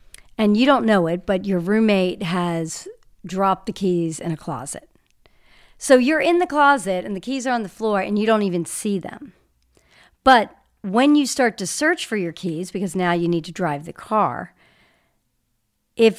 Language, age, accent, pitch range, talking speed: English, 50-69, American, 170-220 Hz, 190 wpm